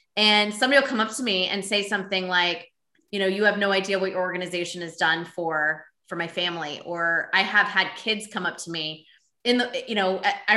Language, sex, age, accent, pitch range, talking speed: English, female, 20-39, American, 185-230 Hz, 225 wpm